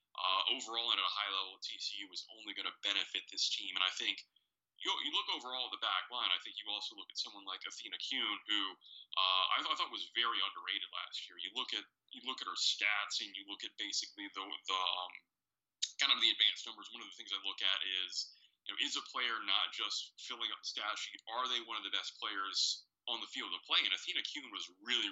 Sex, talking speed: male, 250 wpm